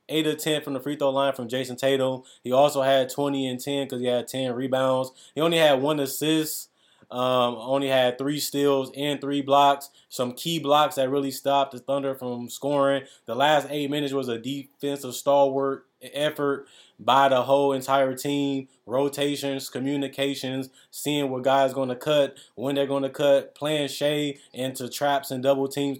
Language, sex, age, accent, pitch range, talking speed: English, male, 20-39, American, 125-140 Hz, 180 wpm